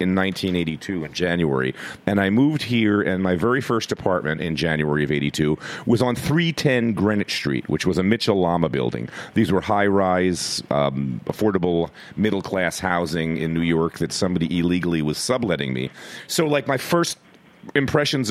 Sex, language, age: male, English, 40-59